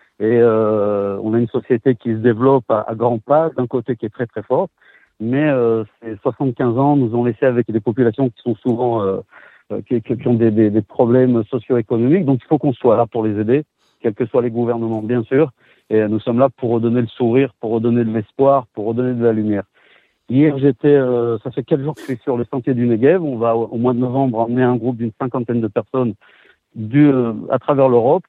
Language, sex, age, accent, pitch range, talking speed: French, male, 50-69, French, 115-140 Hz, 230 wpm